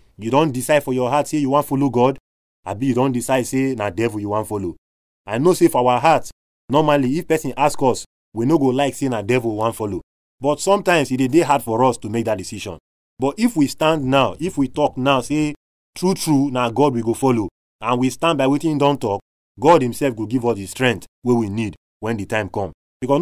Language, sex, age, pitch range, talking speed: English, male, 30-49, 110-145 Hz, 250 wpm